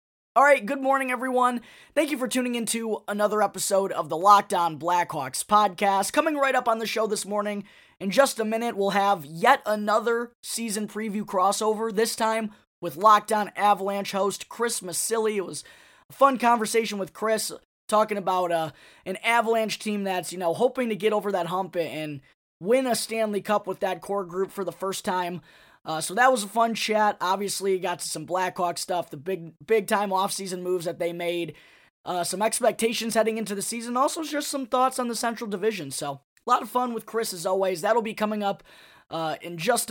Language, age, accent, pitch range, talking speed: English, 20-39, American, 180-225 Hz, 200 wpm